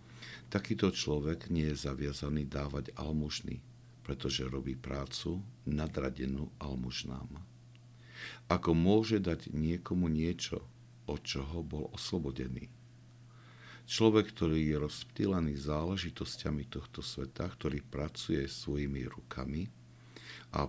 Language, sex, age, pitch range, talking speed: Slovak, male, 60-79, 70-110 Hz, 95 wpm